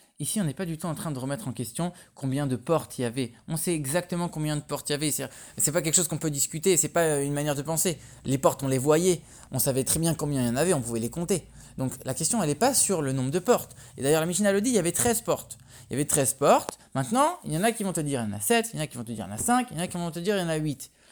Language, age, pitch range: English, 20-39, 140-200 Hz